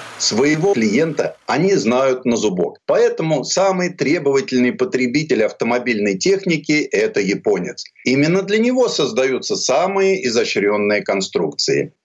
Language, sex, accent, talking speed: Russian, male, native, 105 wpm